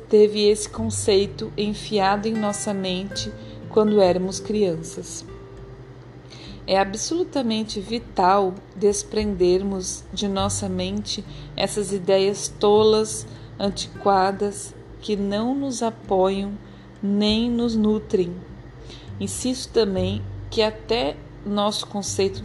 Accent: Brazilian